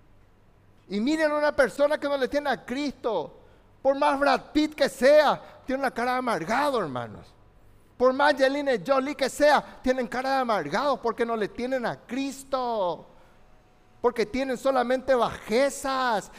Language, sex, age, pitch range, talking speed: Spanish, male, 50-69, 190-270 Hz, 155 wpm